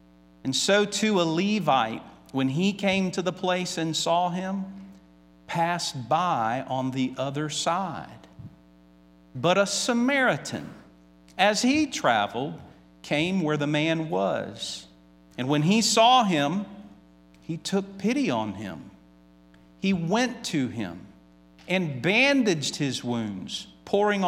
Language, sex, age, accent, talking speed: English, male, 50-69, American, 125 wpm